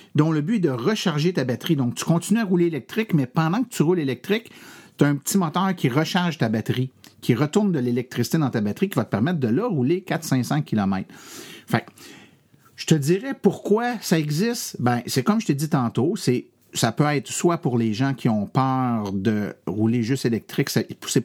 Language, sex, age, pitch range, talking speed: French, male, 50-69, 115-165 Hz, 205 wpm